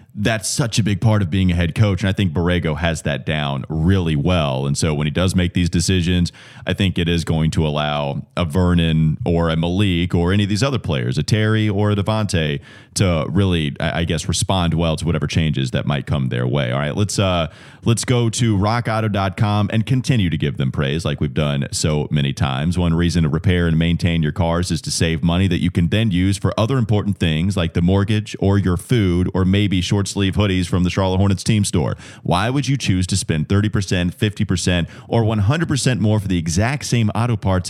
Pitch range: 85-110 Hz